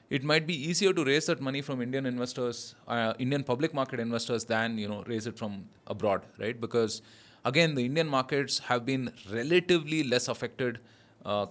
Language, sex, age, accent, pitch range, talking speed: English, male, 20-39, Indian, 110-135 Hz, 180 wpm